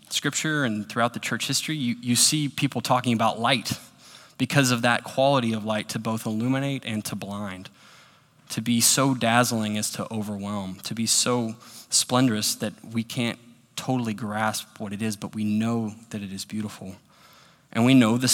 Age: 20-39